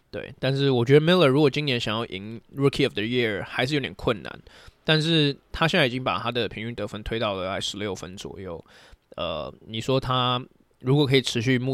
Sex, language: male, Chinese